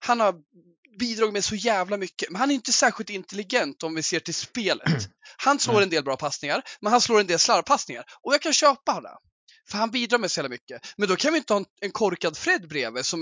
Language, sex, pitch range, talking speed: Swedish, male, 180-265 Hz, 235 wpm